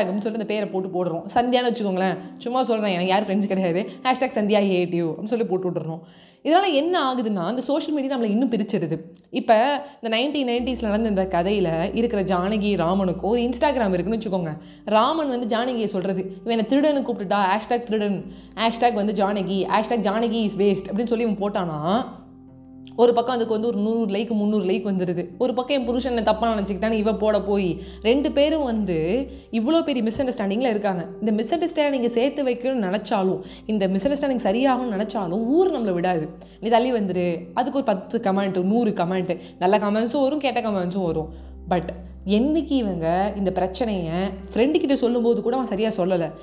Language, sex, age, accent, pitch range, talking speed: Tamil, female, 20-39, native, 185-240 Hz, 170 wpm